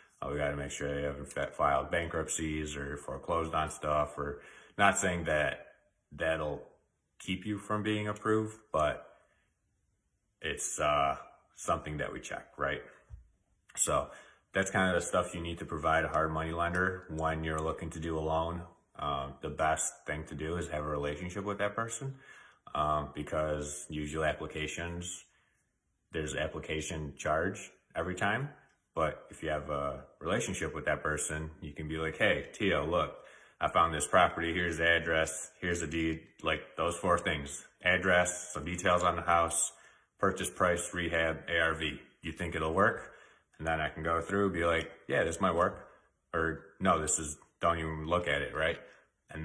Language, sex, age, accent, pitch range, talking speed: English, male, 30-49, American, 75-90 Hz, 175 wpm